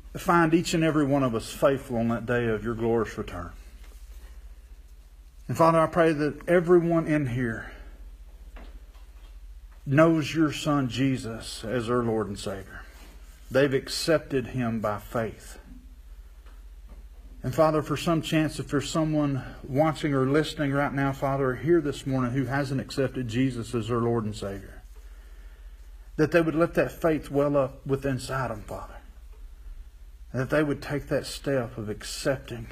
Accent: American